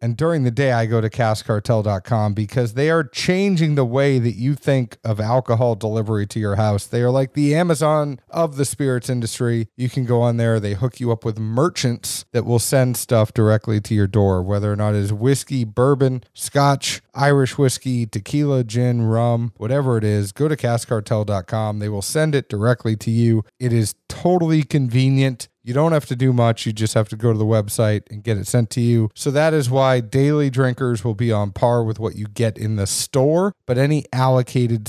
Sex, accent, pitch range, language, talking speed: male, American, 110-135 Hz, English, 210 wpm